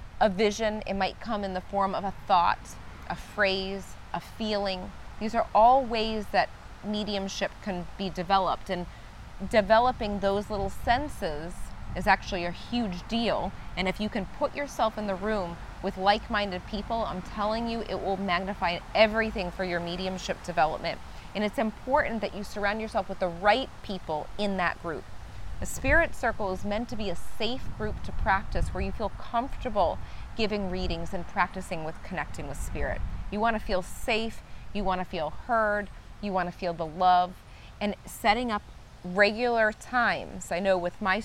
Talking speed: 175 wpm